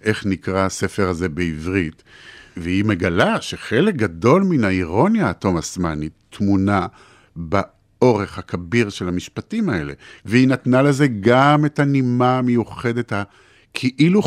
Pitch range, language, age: 95-130 Hz, Hebrew, 50-69